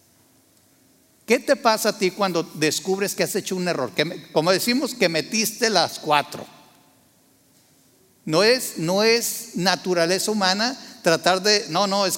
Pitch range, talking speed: 165-215 Hz, 150 wpm